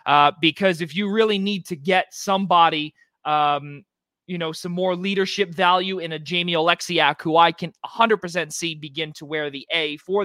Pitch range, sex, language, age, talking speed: 165-220 Hz, male, English, 20-39, 180 wpm